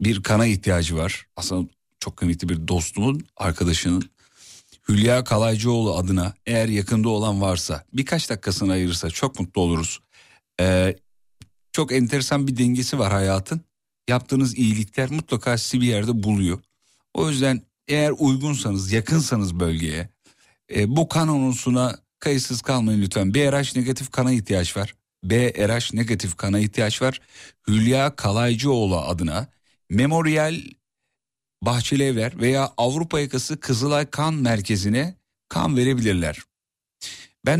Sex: male